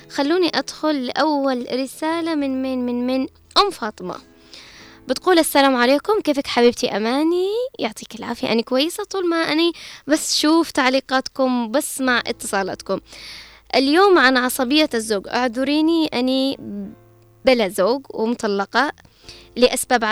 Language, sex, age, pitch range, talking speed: Arabic, female, 10-29, 230-275 Hz, 115 wpm